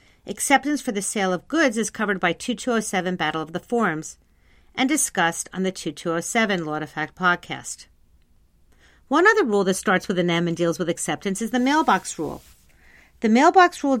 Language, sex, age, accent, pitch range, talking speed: English, female, 50-69, American, 170-245 Hz, 180 wpm